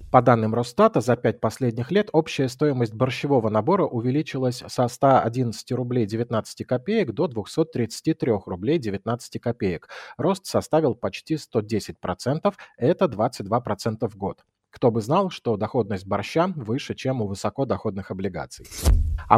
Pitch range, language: 105-140 Hz, Russian